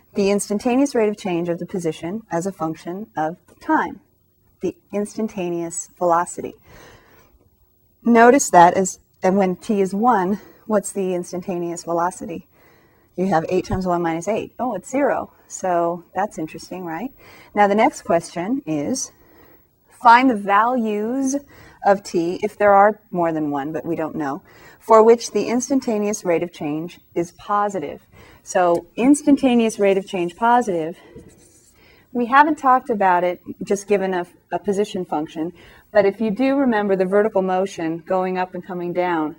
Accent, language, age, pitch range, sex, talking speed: American, English, 30-49, 170-215 Hz, female, 150 wpm